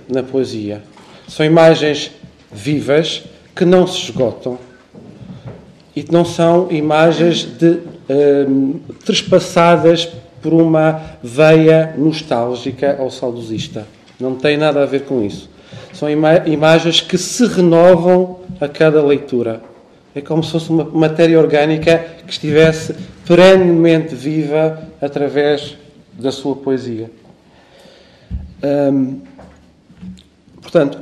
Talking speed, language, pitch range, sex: 100 wpm, Portuguese, 135-165 Hz, male